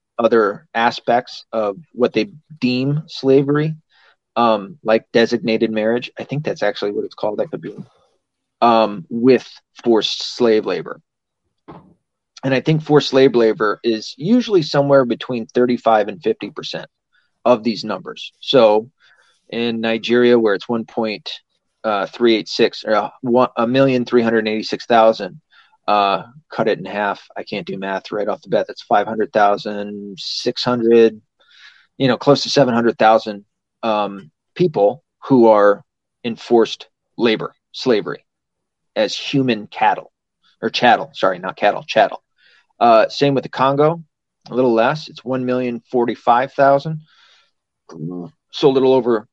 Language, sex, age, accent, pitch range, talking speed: English, male, 30-49, American, 110-135 Hz, 130 wpm